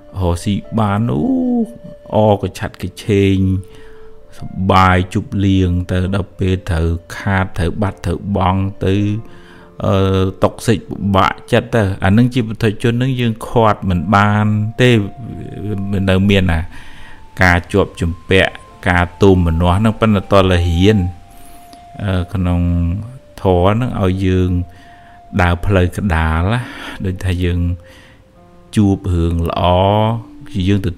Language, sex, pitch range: English, male, 90-105 Hz